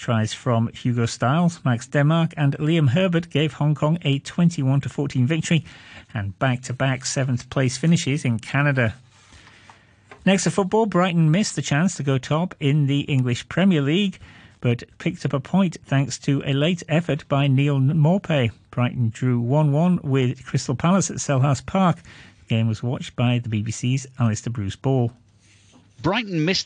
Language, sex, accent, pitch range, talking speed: English, male, British, 125-160 Hz, 160 wpm